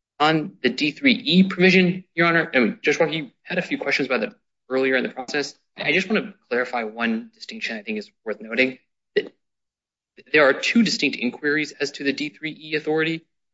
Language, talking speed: English, 180 wpm